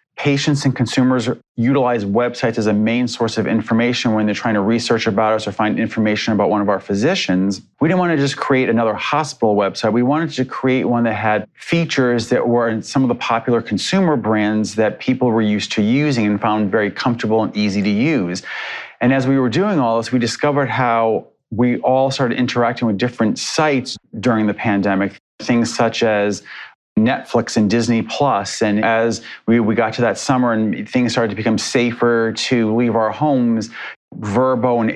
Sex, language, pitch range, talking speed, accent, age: male, English, 110-125 Hz, 195 wpm, American, 30-49